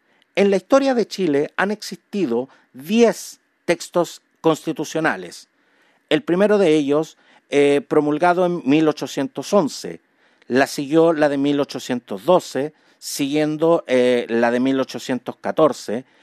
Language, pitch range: Spanish, 135-165 Hz